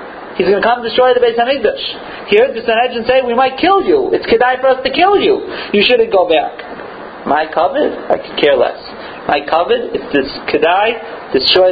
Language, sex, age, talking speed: Italian, male, 40-59, 205 wpm